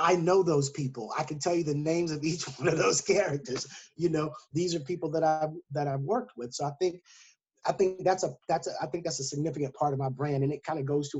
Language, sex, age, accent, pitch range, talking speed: English, male, 30-49, American, 135-170 Hz, 275 wpm